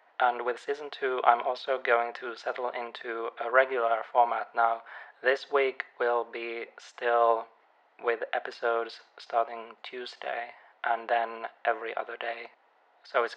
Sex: male